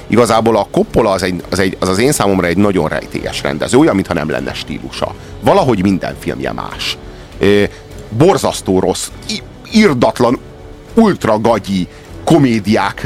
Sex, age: male, 30-49